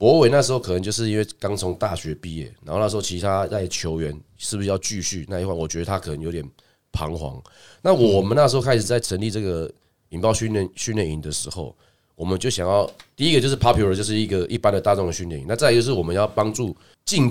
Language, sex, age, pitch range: Chinese, male, 30-49, 85-110 Hz